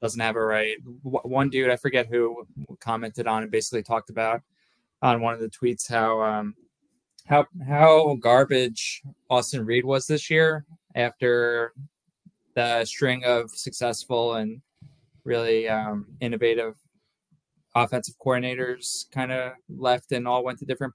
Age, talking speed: 20-39, 140 wpm